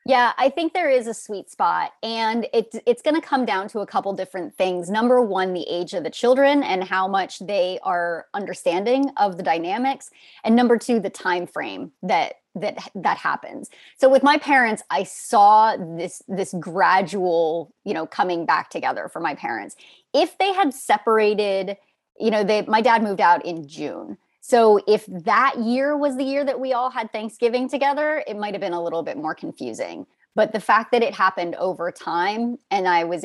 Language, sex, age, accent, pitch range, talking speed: English, female, 30-49, American, 180-260 Hz, 195 wpm